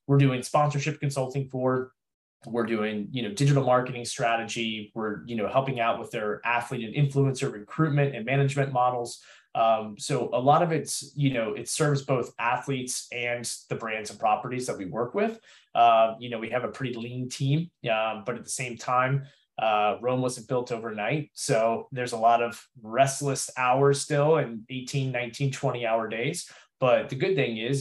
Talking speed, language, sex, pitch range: 185 wpm, English, male, 115-135 Hz